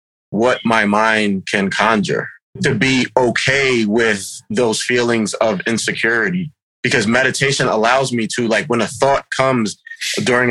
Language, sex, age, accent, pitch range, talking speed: English, male, 30-49, American, 110-140 Hz, 135 wpm